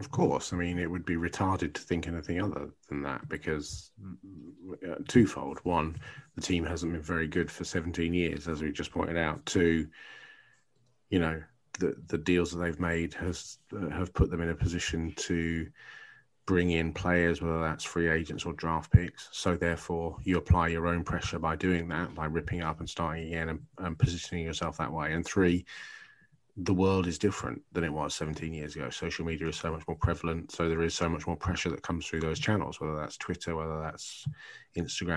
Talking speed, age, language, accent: 200 wpm, 30-49, English, British